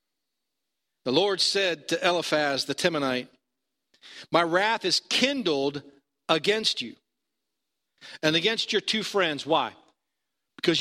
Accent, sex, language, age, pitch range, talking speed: American, male, English, 50-69, 145-210 Hz, 110 wpm